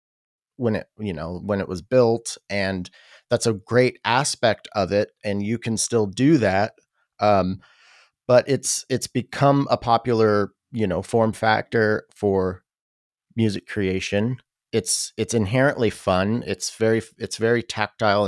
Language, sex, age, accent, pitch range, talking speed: English, male, 30-49, American, 95-120 Hz, 145 wpm